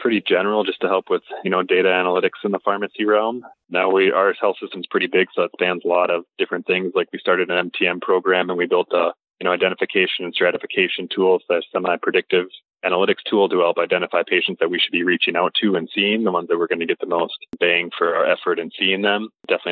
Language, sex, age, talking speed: English, male, 20-39, 245 wpm